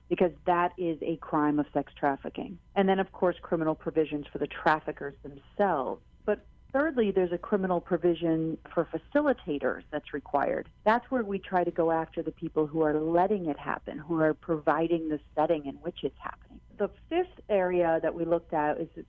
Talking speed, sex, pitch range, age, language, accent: 185 wpm, female, 155-190 Hz, 40-59, English, American